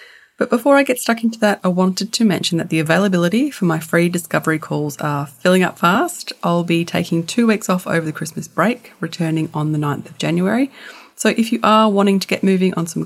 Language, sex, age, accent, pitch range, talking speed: English, female, 30-49, Australian, 155-205 Hz, 225 wpm